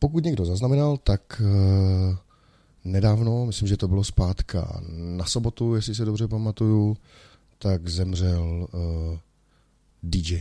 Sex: male